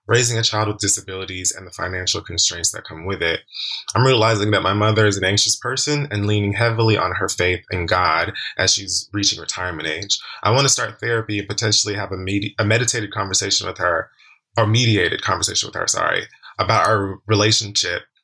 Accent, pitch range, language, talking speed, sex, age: American, 95-110 Hz, English, 190 wpm, male, 20-39